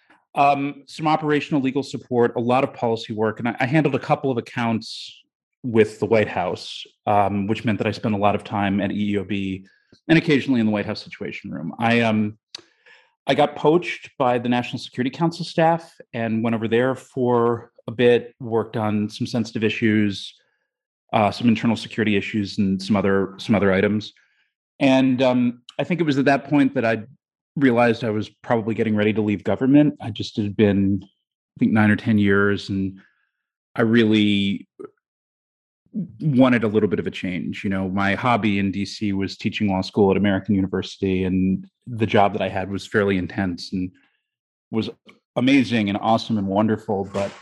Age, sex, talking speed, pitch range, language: 30-49, male, 185 wpm, 105-130 Hz, English